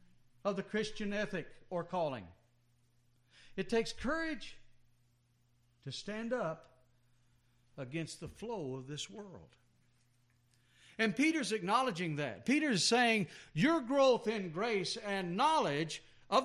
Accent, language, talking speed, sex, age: American, English, 115 wpm, male, 60-79